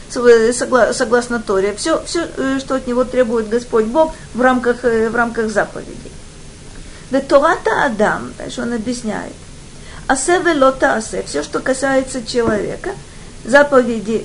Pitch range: 220-270 Hz